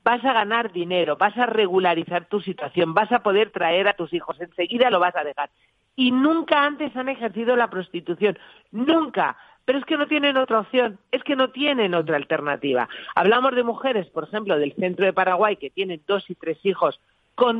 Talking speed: 200 wpm